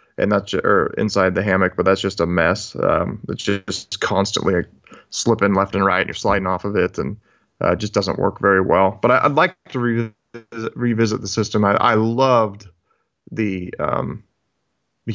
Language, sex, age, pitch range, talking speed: English, male, 30-49, 100-110 Hz, 185 wpm